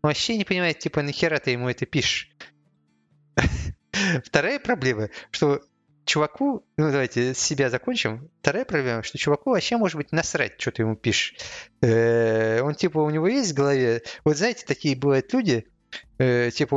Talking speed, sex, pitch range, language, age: 150 wpm, male, 120-165 Hz, Russian, 30-49